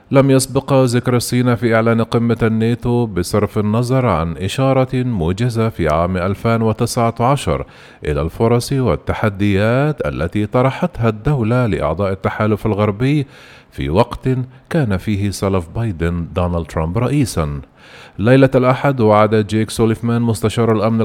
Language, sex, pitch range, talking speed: Arabic, male, 105-130 Hz, 115 wpm